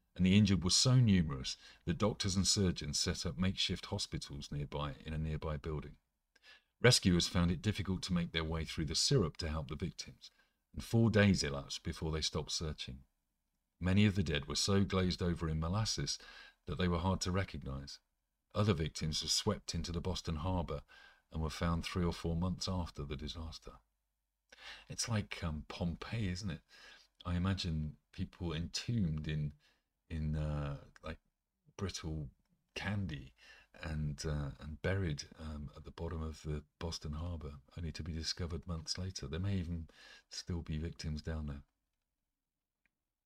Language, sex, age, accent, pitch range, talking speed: English, male, 50-69, British, 75-95 Hz, 165 wpm